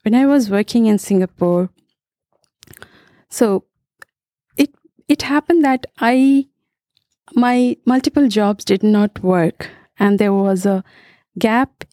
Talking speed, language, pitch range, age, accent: 115 wpm, English, 195-270 Hz, 50-69, Indian